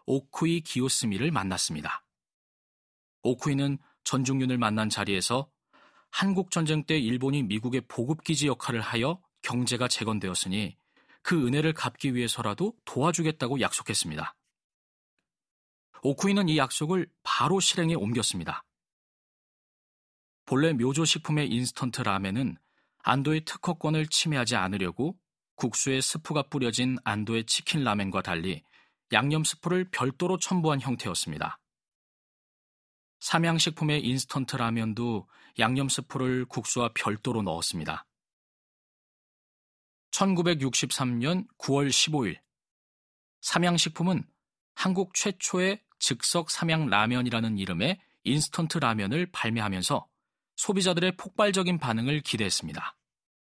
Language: Korean